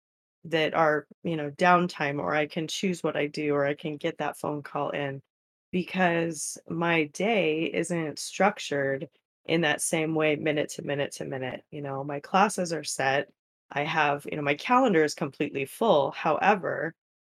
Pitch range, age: 145-170 Hz, 20-39